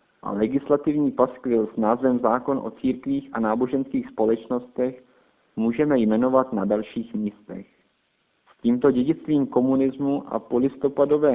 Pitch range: 115-135 Hz